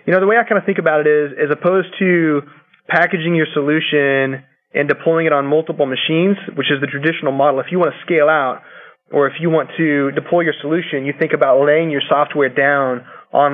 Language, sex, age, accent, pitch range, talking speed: English, male, 20-39, American, 140-160 Hz, 220 wpm